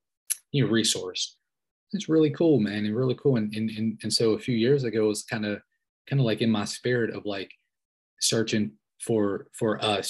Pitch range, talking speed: 105-125 Hz, 200 wpm